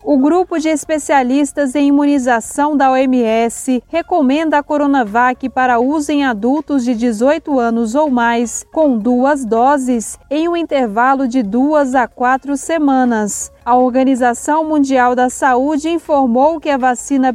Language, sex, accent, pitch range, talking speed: Portuguese, female, Brazilian, 255-300 Hz, 140 wpm